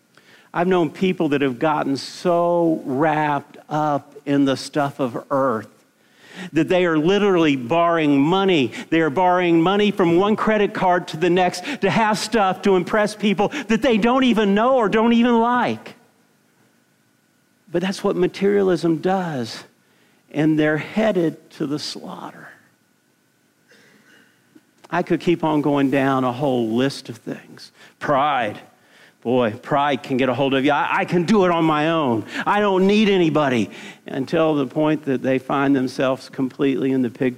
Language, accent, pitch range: English, American, 135-185 Hz